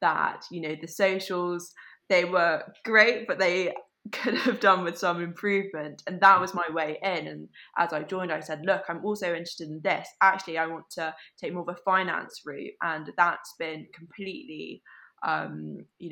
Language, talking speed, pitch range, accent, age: English, 185 wpm, 160-195 Hz, British, 20-39